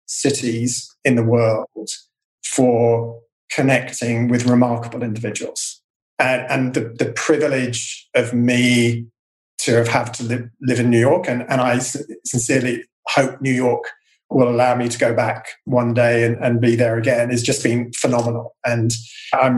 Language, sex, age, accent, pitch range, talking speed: English, male, 40-59, British, 120-135 Hz, 155 wpm